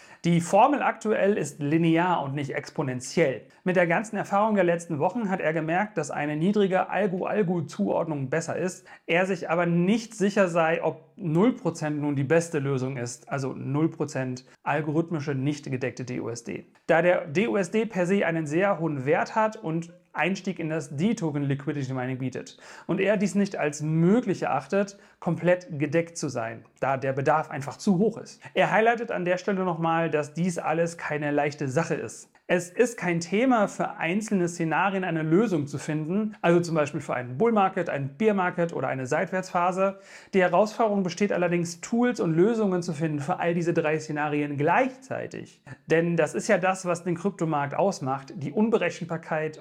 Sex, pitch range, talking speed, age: male, 150-190 Hz, 165 wpm, 40-59